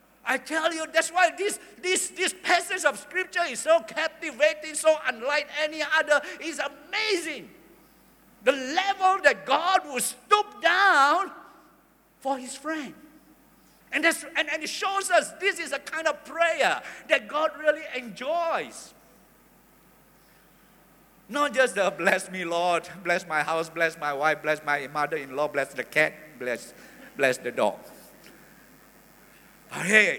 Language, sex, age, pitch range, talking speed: English, male, 50-69, 245-335 Hz, 145 wpm